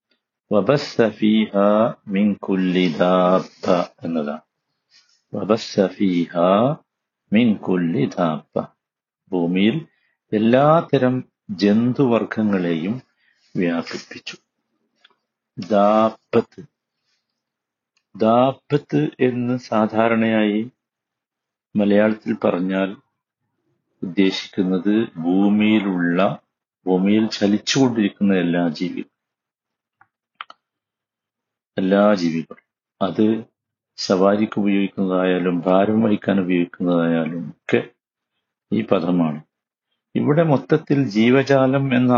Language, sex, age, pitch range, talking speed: Malayalam, male, 50-69, 95-115 Hz, 45 wpm